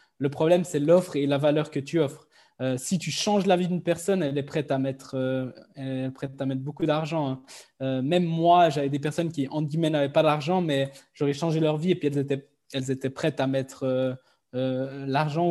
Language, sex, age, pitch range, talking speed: French, male, 20-39, 140-165 Hz, 235 wpm